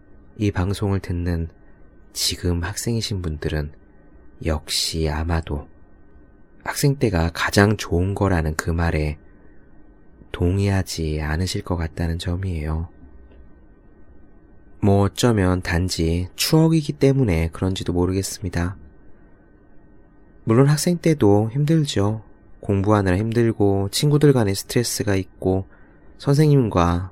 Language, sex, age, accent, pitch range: Korean, male, 20-39, native, 80-100 Hz